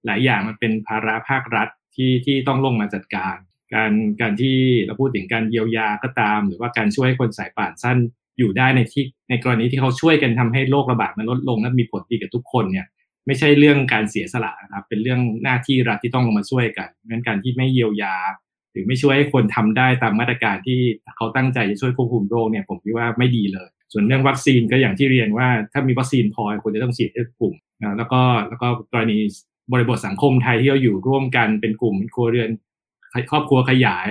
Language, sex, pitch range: Thai, male, 110-130 Hz